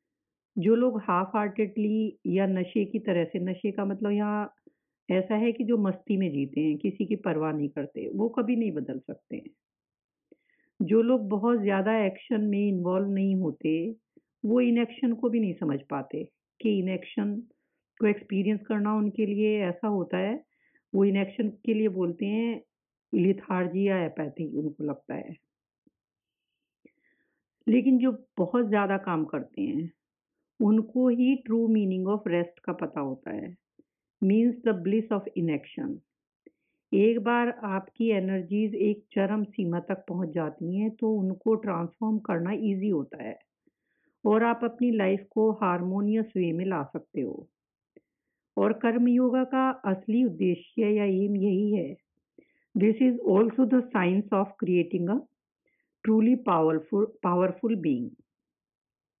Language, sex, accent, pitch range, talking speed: English, female, Indian, 185-230 Hz, 130 wpm